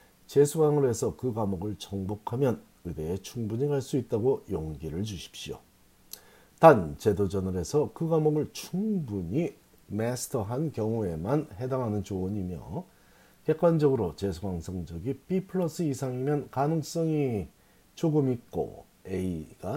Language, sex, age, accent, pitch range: Korean, male, 40-59, native, 95-140 Hz